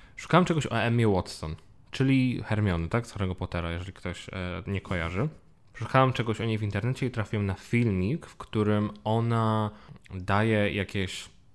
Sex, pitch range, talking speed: male, 100-120 Hz, 150 wpm